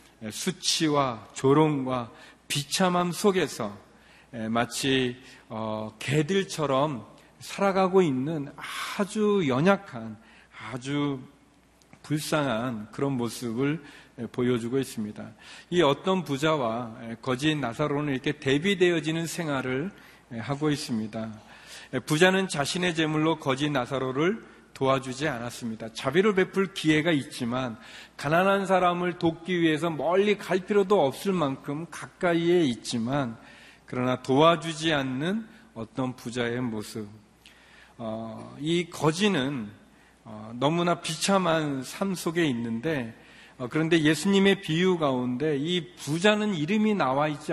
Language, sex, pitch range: Korean, male, 125-175 Hz